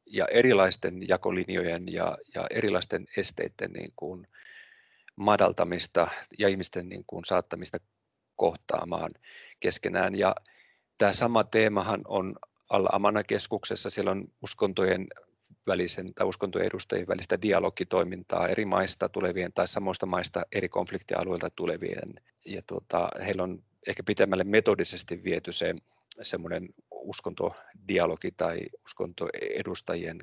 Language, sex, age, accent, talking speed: Finnish, male, 30-49, native, 105 wpm